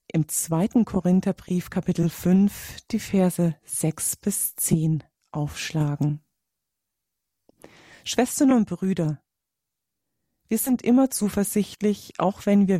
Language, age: German, 30-49